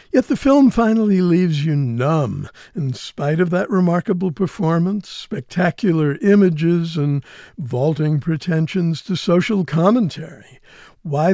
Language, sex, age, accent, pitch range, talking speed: English, male, 60-79, American, 150-190 Hz, 115 wpm